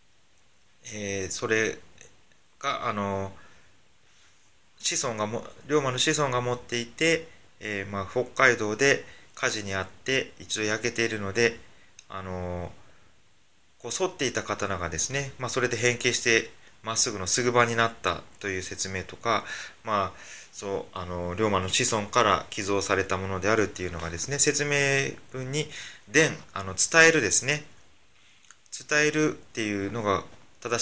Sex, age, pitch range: male, 20-39, 95-130 Hz